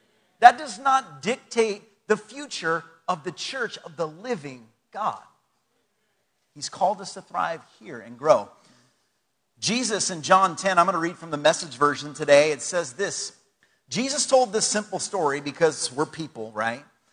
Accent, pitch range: American, 145-220 Hz